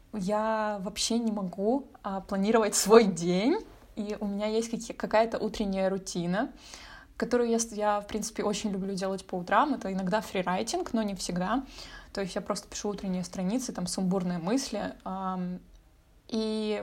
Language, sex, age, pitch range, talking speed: Russian, female, 20-39, 190-225 Hz, 155 wpm